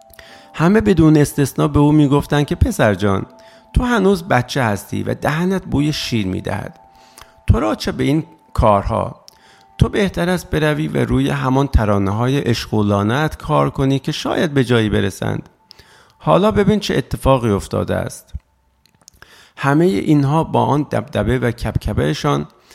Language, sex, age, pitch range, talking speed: Persian, male, 50-69, 105-150 Hz, 140 wpm